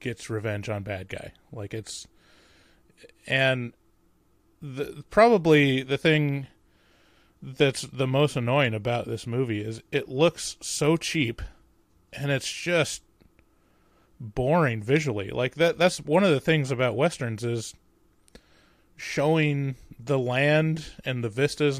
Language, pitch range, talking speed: English, 110-145 Hz, 120 wpm